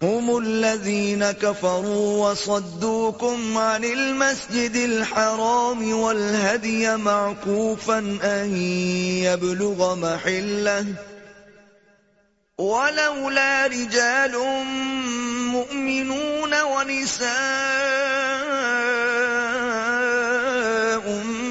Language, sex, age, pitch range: Urdu, male, 30-49, 200-230 Hz